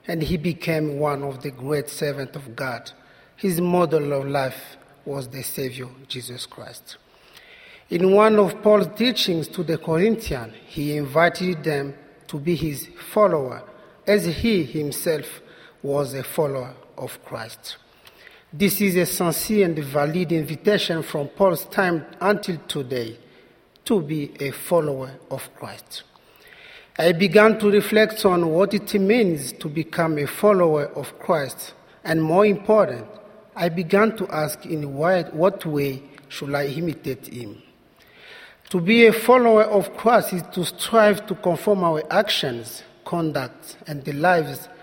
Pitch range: 145-200 Hz